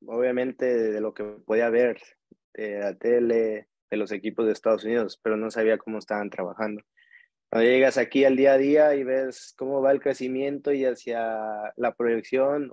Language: Spanish